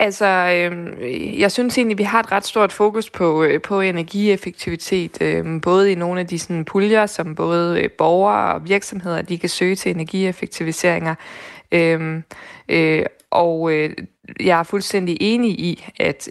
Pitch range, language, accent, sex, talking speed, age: 165-190 Hz, Danish, native, female, 160 wpm, 20-39